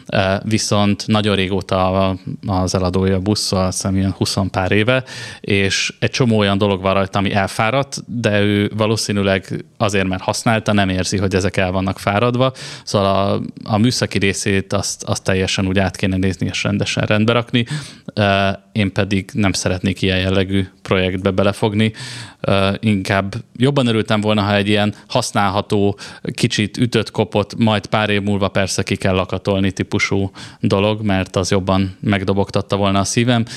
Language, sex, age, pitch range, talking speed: Hungarian, male, 20-39, 95-110 Hz, 145 wpm